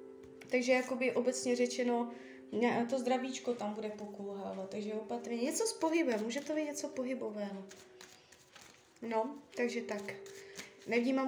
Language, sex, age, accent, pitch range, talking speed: Czech, female, 20-39, native, 210-250 Hz, 130 wpm